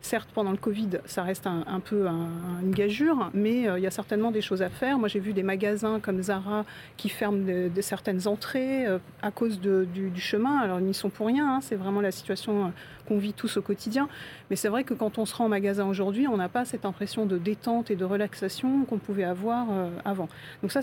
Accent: French